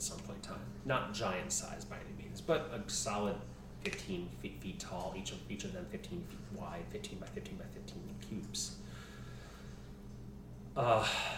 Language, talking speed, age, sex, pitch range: English, 170 wpm, 30-49, male, 65-105 Hz